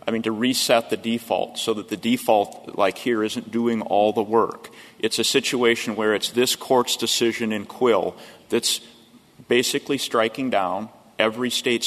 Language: English